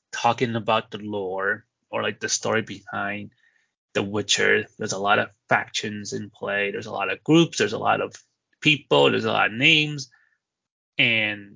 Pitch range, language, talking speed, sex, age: 105-120 Hz, English, 175 wpm, male, 20-39